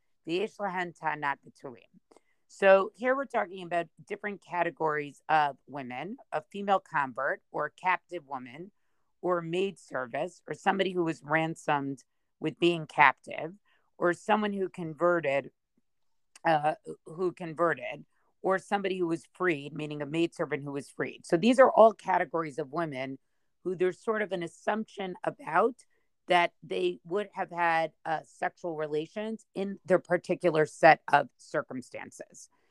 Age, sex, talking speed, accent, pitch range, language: 50-69, female, 145 wpm, American, 155-190 Hz, English